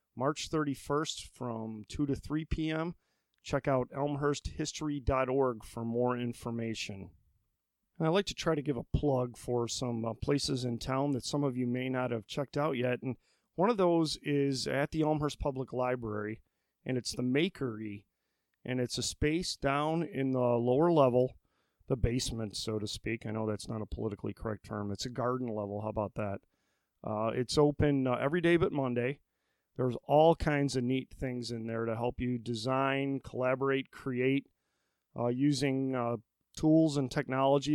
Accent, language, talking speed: American, English, 175 wpm